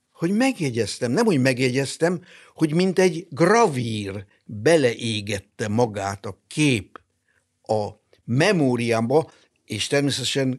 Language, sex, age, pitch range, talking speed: Hungarian, male, 60-79, 110-140 Hz, 95 wpm